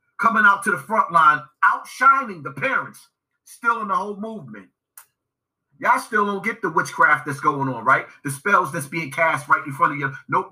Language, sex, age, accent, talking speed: English, male, 30-49, American, 200 wpm